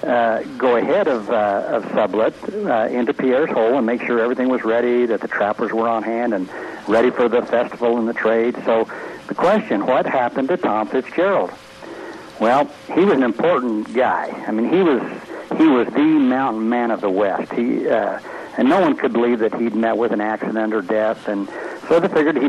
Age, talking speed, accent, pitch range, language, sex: 60-79, 205 wpm, American, 110-130 Hz, English, male